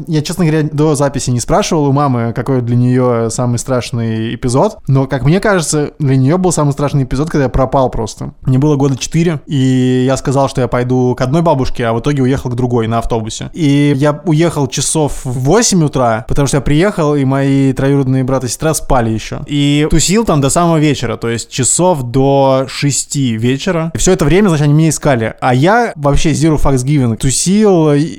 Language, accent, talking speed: Russian, native, 200 wpm